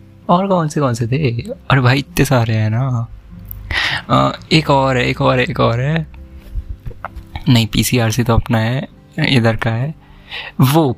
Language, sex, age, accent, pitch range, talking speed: Hindi, male, 20-39, native, 110-135 Hz, 175 wpm